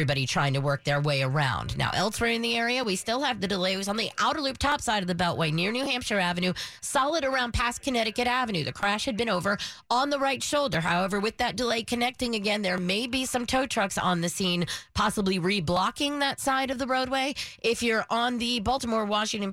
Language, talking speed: English, 220 wpm